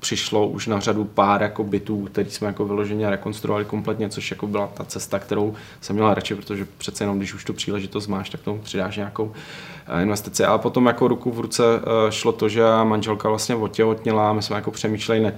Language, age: Czech, 20-39